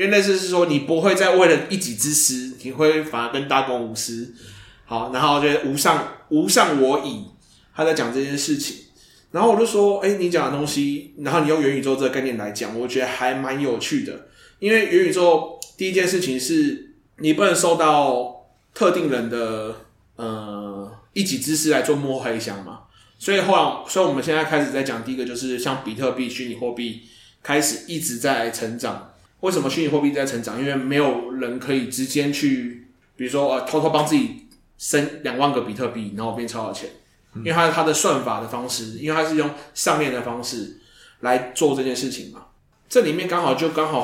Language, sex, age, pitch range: Chinese, male, 20-39, 120-155 Hz